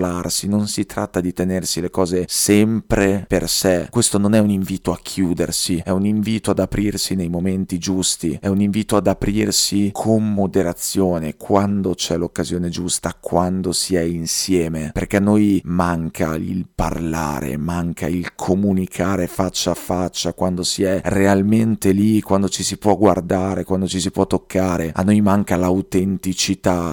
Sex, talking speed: male, 160 wpm